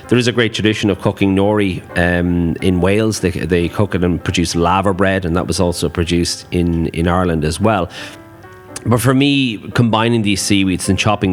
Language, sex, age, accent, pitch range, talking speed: English, male, 30-49, Irish, 90-105 Hz, 195 wpm